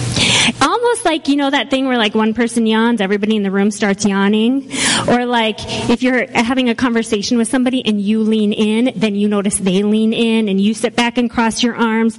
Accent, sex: American, female